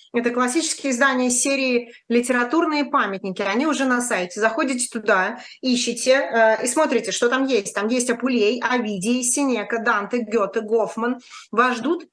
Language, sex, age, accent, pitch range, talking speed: Russian, female, 20-39, native, 220-265 Hz, 145 wpm